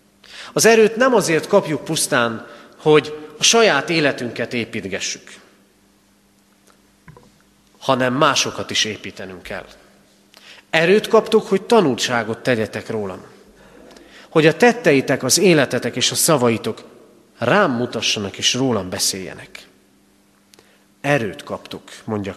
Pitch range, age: 100-150 Hz, 40-59